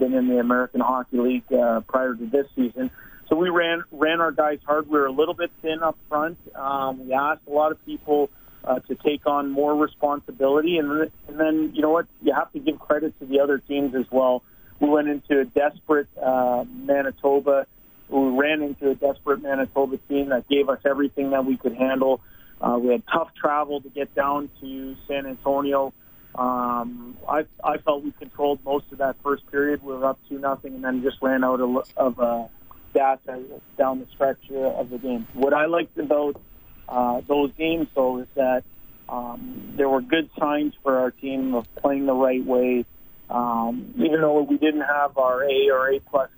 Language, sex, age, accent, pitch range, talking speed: English, male, 40-59, American, 130-150 Hz, 200 wpm